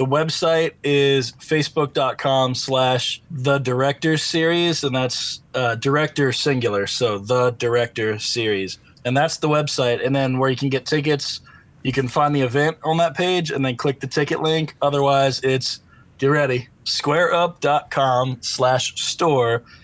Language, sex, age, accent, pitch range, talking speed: English, male, 20-39, American, 125-145 Hz, 150 wpm